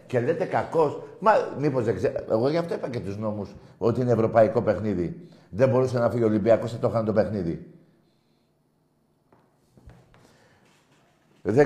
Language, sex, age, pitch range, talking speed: Greek, male, 60-79, 120-175 Hz, 155 wpm